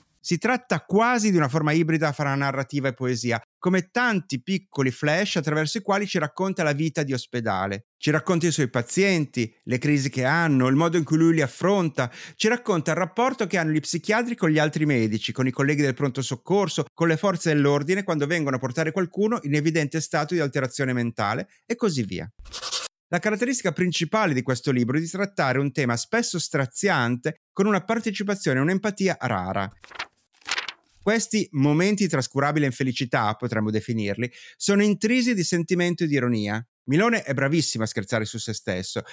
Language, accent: Italian, native